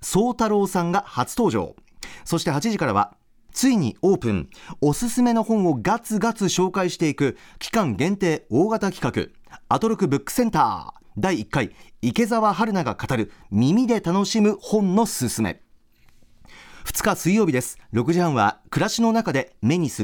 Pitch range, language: 125-205 Hz, Japanese